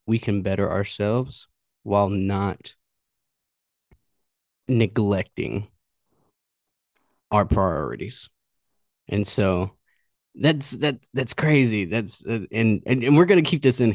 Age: 20-39